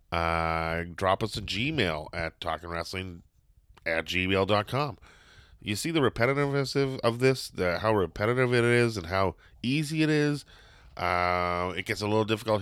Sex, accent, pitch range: male, American, 85-105 Hz